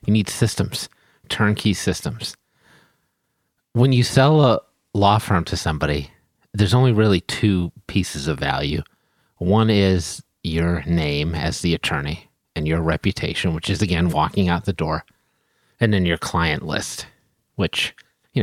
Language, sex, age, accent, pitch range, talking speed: English, male, 30-49, American, 85-115 Hz, 145 wpm